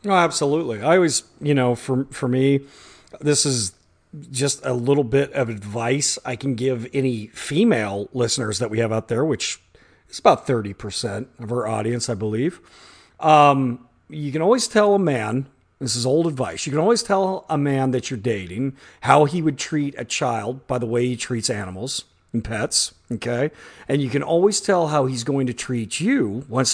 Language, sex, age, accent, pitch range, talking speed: English, male, 40-59, American, 120-150 Hz, 190 wpm